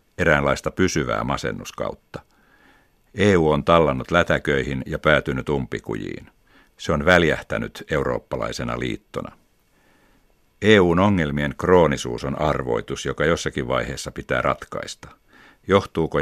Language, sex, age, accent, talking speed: Finnish, male, 60-79, native, 95 wpm